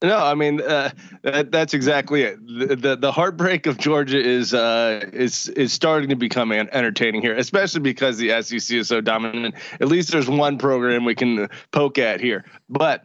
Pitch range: 120-150 Hz